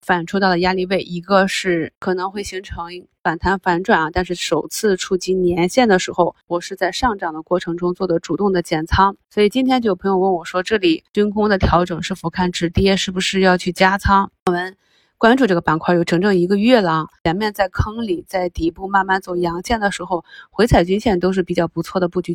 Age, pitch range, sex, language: 20-39, 170-200 Hz, female, Chinese